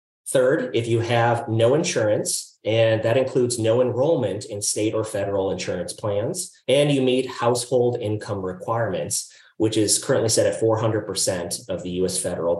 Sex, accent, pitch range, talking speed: male, American, 105-150 Hz, 155 wpm